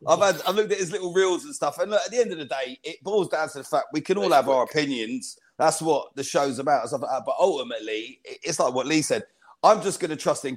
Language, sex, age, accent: English, male, 30-49, British